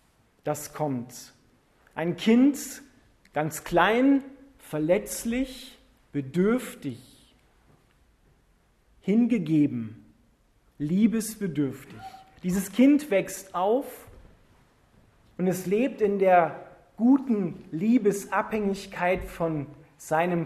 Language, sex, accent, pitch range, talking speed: German, male, German, 165-220 Hz, 65 wpm